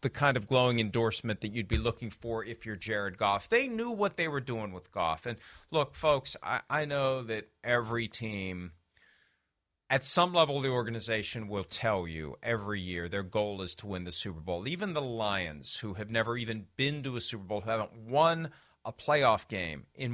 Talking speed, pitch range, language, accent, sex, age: 205 wpm, 110-150 Hz, English, American, male, 40-59